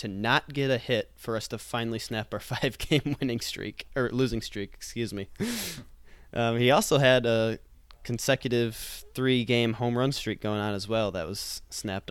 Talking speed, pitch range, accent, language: 180 wpm, 105-125 Hz, American, English